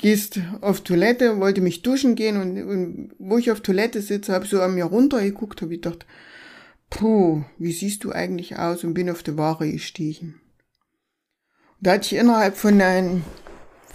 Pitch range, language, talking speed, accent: 180-225 Hz, German, 175 wpm, German